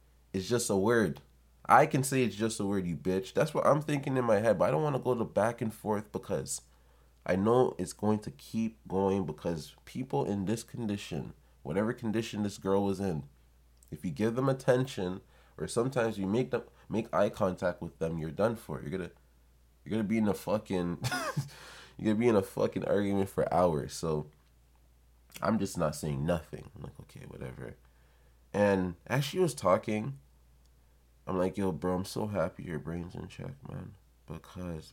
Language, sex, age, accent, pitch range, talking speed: English, male, 20-39, American, 65-110 Hz, 190 wpm